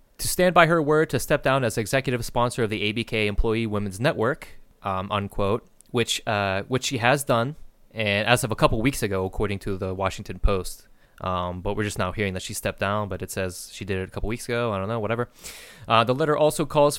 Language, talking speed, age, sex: English, 235 wpm, 30-49, male